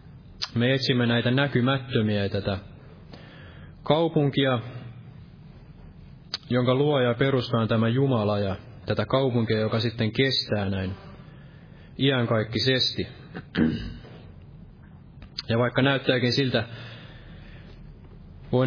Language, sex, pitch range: Finnish, male, 110-135 Hz